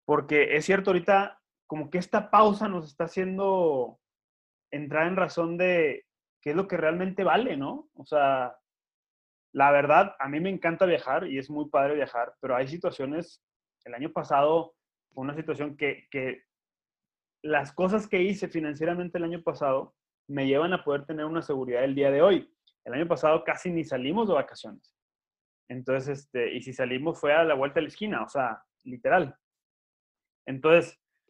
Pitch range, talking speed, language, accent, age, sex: 135-175 Hz, 170 wpm, Spanish, Mexican, 30-49, male